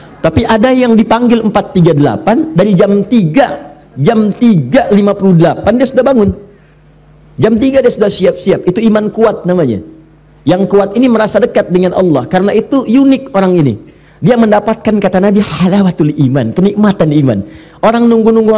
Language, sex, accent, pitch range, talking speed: Indonesian, male, native, 170-225 Hz, 140 wpm